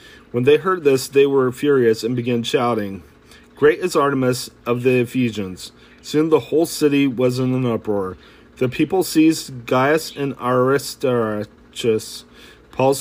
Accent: American